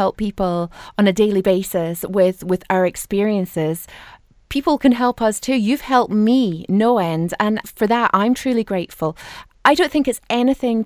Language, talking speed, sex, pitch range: English, 170 wpm, female, 190-230 Hz